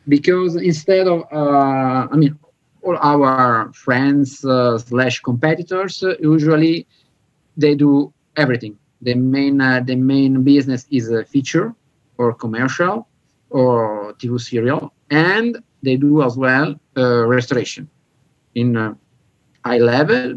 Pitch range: 130-155 Hz